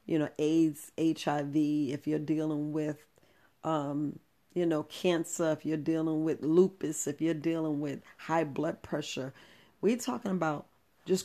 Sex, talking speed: female, 150 wpm